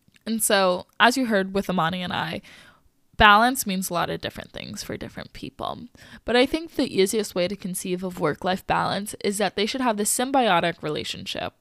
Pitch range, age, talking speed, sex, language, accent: 175-210 Hz, 10-29, 195 wpm, female, English, American